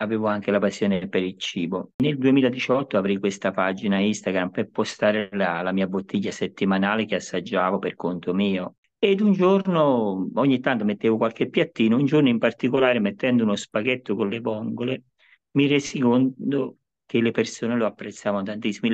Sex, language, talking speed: male, Italian, 165 wpm